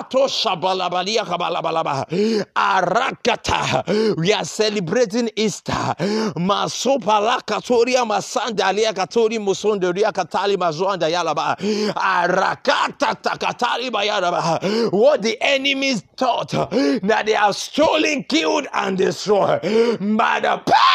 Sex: male